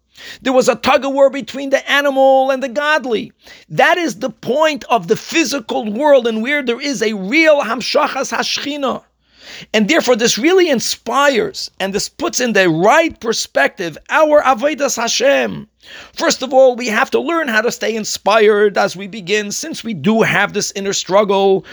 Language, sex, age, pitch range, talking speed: English, male, 40-59, 205-275 Hz, 175 wpm